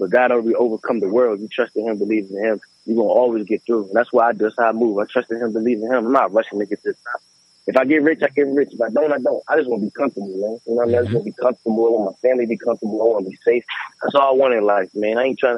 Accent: American